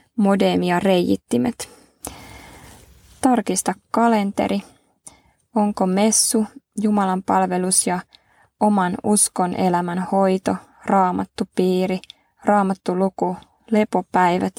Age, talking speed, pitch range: 20-39, 75 wpm, 185-215 Hz